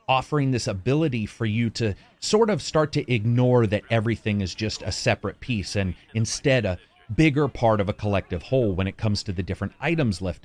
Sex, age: male, 30-49